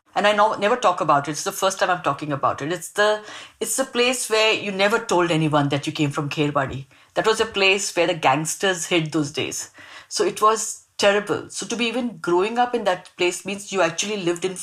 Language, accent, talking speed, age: English, Indian, 240 wpm, 60-79